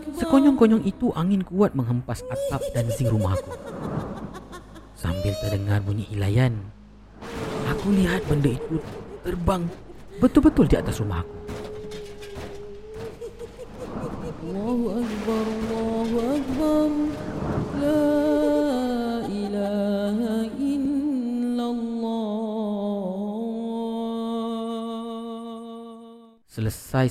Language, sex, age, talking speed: Malay, male, 30-49, 50 wpm